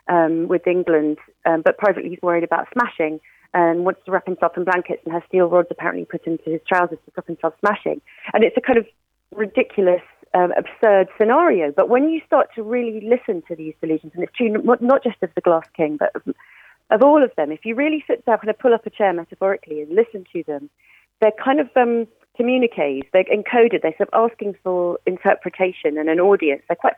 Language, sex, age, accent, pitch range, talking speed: English, female, 40-59, British, 170-230 Hz, 220 wpm